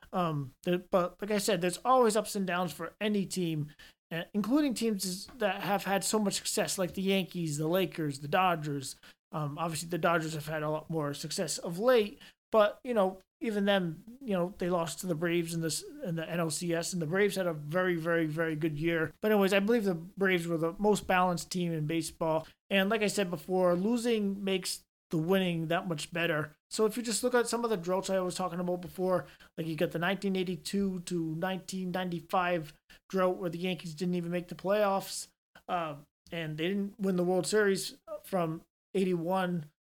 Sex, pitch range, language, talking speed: male, 165-195 Hz, English, 200 wpm